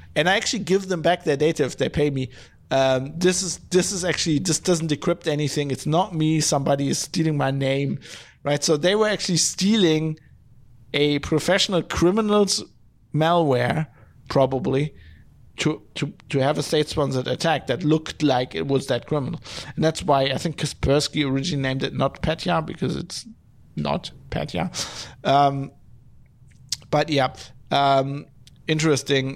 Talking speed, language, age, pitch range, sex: 155 wpm, English, 50-69, 135-170 Hz, male